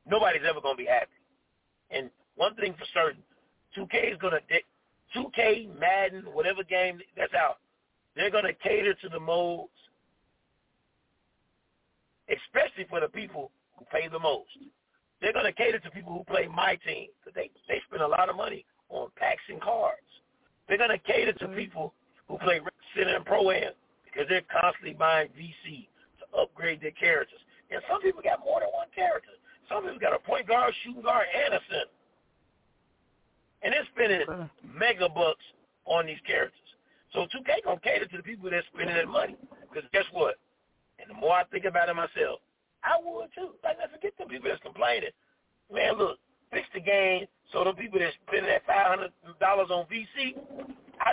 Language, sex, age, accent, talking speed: English, male, 50-69, American, 185 wpm